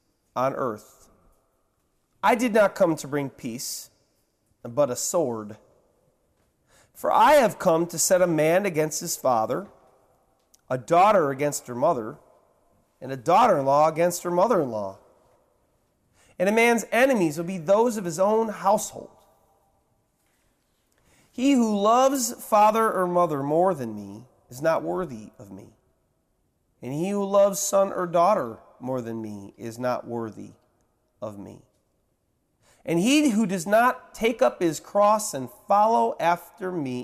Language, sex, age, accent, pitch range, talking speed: English, male, 30-49, American, 120-185 Hz, 145 wpm